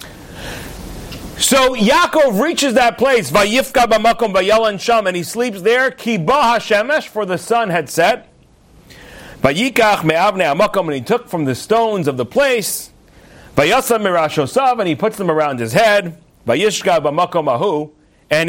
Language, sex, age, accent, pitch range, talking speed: English, male, 40-59, American, 175-250 Hz, 100 wpm